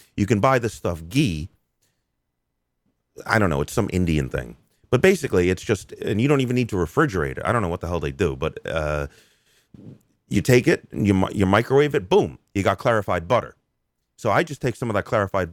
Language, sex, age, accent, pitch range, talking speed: English, male, 40-59, American, 90-125 Hz, 215 wpm